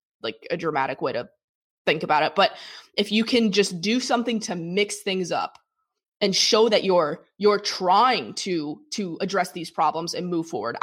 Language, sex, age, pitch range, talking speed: English, female, 20-39, 175-205 Hz, 185 wpm